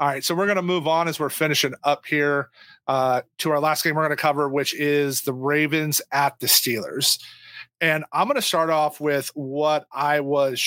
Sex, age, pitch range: male, 30-49, 140-160 Hz